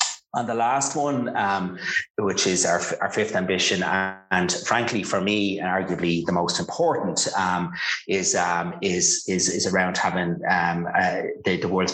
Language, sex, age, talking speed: English, male, 30-49, 170 wpm